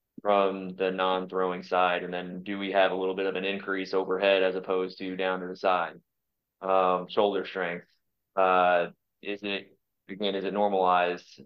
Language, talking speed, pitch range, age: English, 175 wpm, 95-100 Hz, 20-39